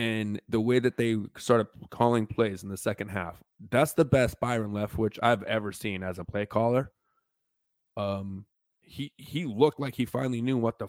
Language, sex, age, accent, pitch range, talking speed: English, male, 20-39, American, 105-125 Hz, 195 wpm